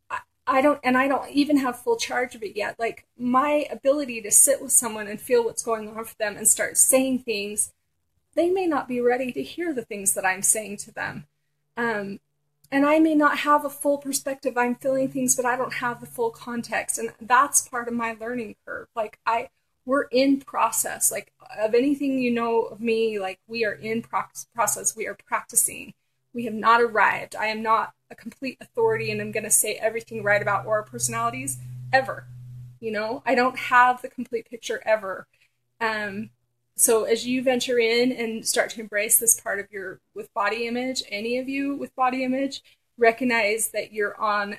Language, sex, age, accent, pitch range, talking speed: English, female, 30-49, American, 210-260 Hz, 200 wpm